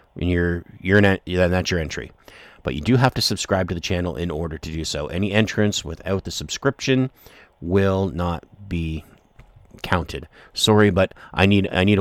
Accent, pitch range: American, 85-105 Hz